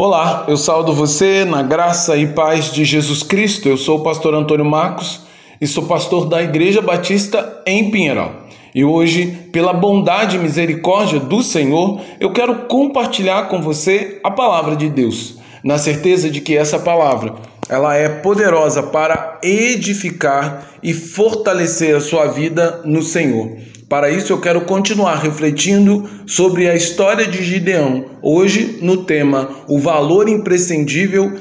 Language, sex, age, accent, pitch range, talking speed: Portuguese, male, 20-39, Brazilian, 150-190 Hz, 145 wpm